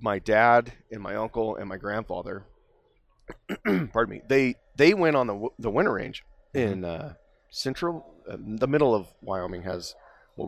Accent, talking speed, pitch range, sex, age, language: American, 160 wpm, 85-115 Hz, male, 30-49, English